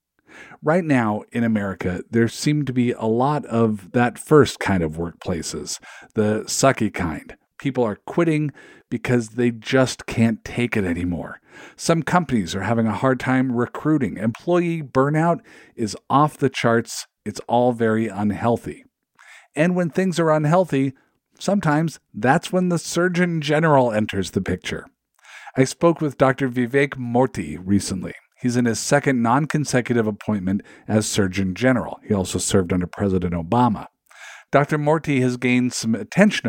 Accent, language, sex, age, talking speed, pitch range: American, English, male, 50-69, 145 wpm, 110-145 Hz